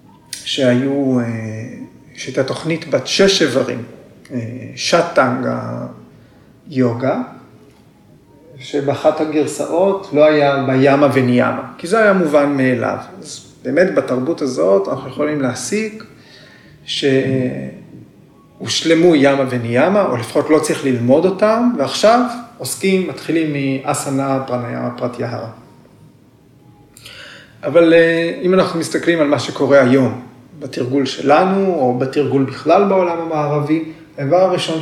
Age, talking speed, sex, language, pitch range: 40-59, 100 wpm, male, Hebrew, 130-170 Hz